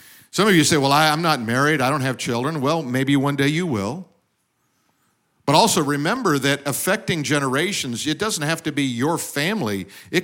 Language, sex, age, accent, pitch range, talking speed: English, male, 50-69, American, 130-170 Hz, 195 wpm